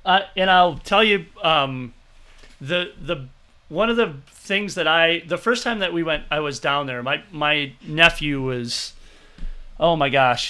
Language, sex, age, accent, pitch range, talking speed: English, male, 30-49, American, 130-195 Hz, 175 wpm